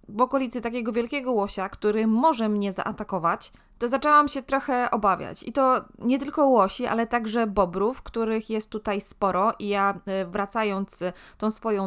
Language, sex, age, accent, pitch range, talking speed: Polish, female, 20-39, native, 190-230 Hz, 155 wpm